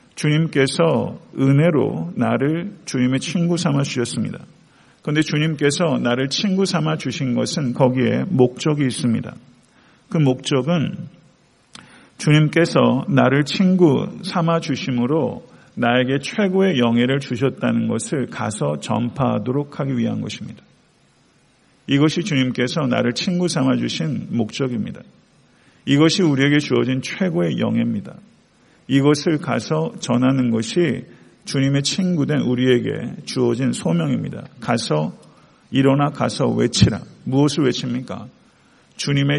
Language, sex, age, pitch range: Korean, male, 50-69, 125-160 Hz